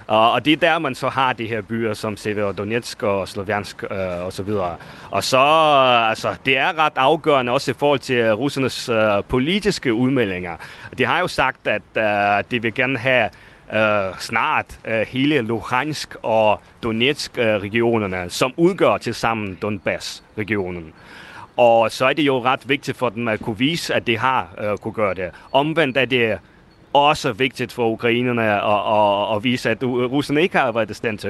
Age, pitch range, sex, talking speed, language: 30-49, 110-145 Hz, male, 180 wpm, Danish